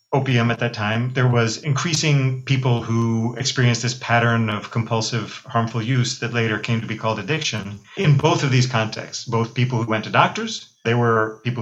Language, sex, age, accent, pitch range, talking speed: English, male, 40-59, American, 115-135 Hz, 190 wpm